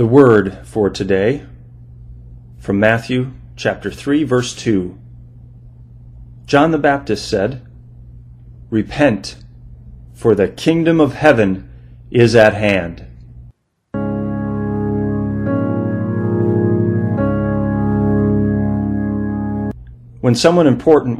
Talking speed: 75 wpm